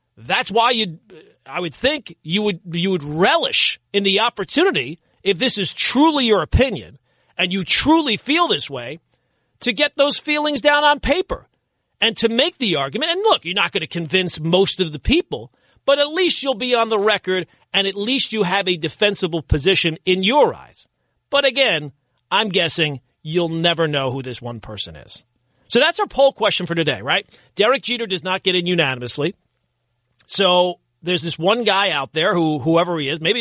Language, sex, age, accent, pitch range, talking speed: English, male, 40-59, American, 160-230 Hz, 190 wpm